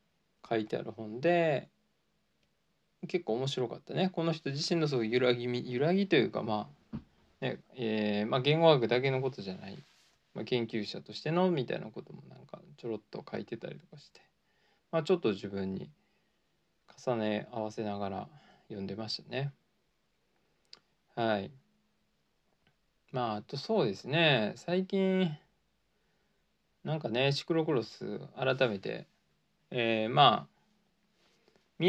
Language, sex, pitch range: Japanese, male, 115-165 Hz